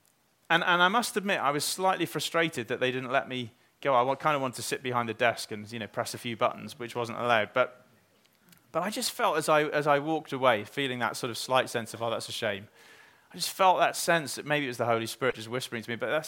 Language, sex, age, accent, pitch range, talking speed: English, male, 30-49, British, 120-170 Hz, 275 wpm